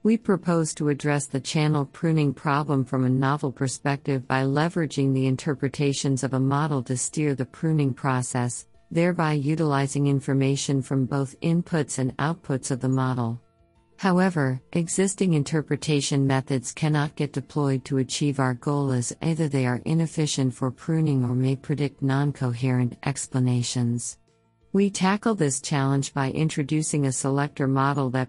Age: 50-69